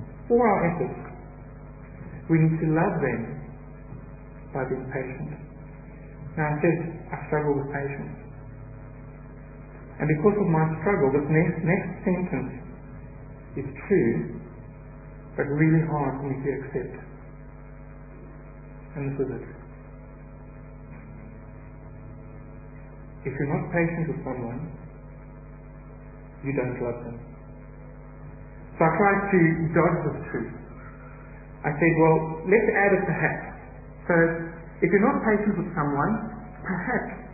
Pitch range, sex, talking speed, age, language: 135-165 Hz, male, 115 wpm, 60-79, English